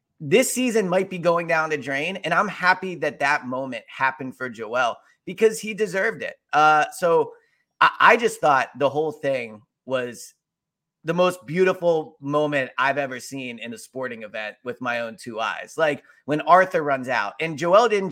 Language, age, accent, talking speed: English, 30-49, American, 180 wpm